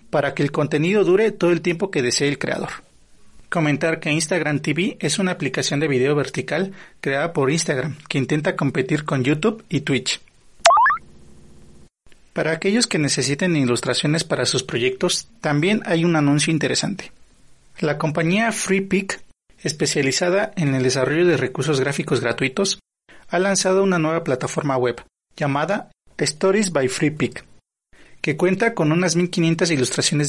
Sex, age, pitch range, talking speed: male, 30-49, 135-180 Hz, 145 wpm